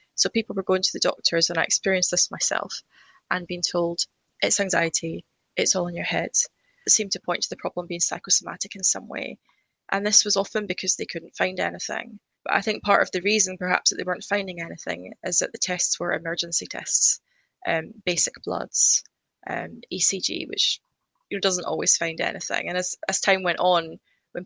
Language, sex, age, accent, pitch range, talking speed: English, female, 20-39, British, 165-195 Hz, 200 wpm